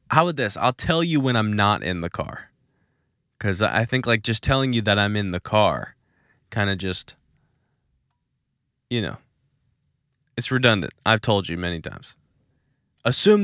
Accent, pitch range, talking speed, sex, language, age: American, 100-135 Hz, 165 wpm, male, English, 20-39